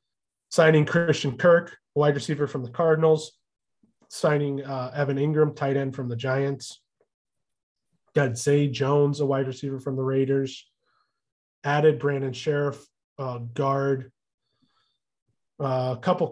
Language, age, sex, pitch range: English, 20-39, male, 125-145 Hz